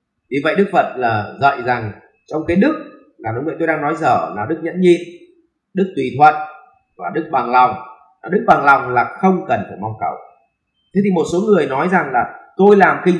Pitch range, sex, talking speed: 140-185 Hz, male, 220 wpm